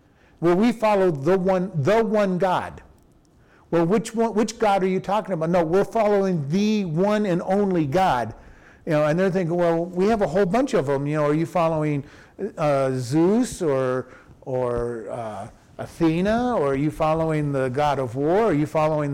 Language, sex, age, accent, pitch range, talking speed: English, male, 50-69, American, 150-195 Hz, 190 wpm